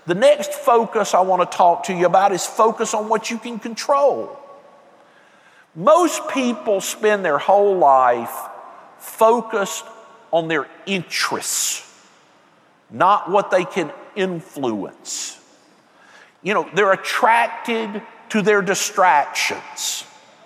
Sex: male